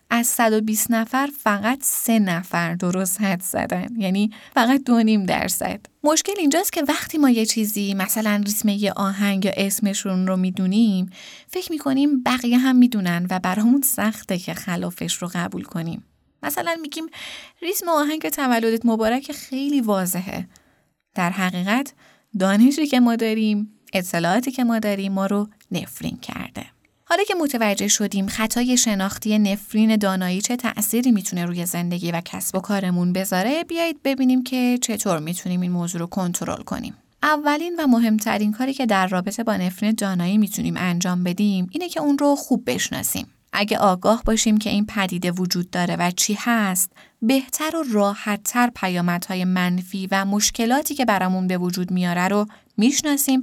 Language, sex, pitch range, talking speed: Persian, female, 190-250 Hz, 155 wpm